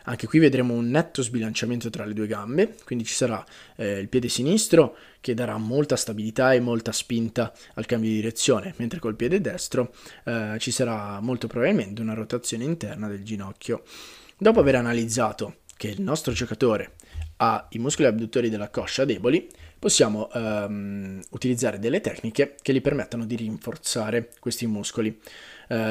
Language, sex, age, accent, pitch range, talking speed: Italian, male, 20-39, native, 110-130 Hz, 155 wpm